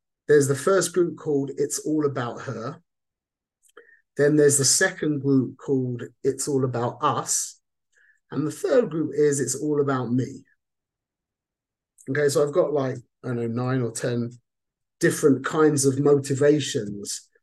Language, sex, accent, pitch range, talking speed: English, male, British, 130-155 Hz, 150 wpm